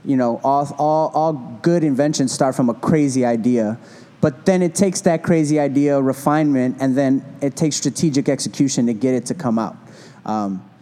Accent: American